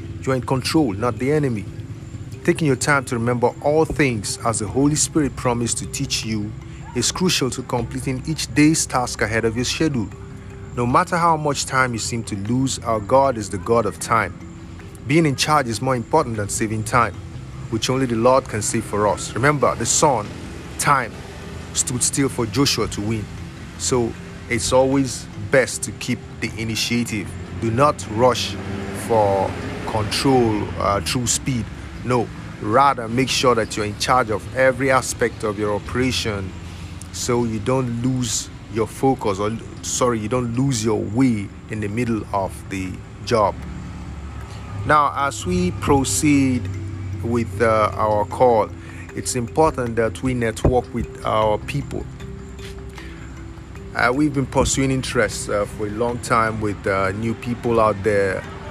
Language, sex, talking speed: English, male, 160 wpm